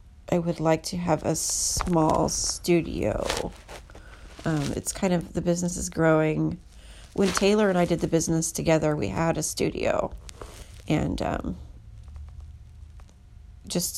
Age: 40-59